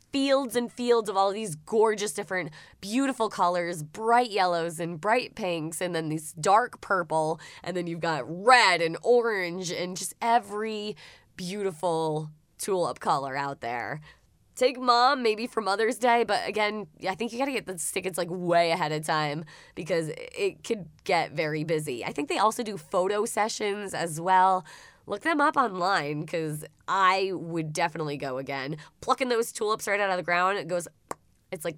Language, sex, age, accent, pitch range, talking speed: English, female, 20-39, American, 170-220 Hz, 175 wpm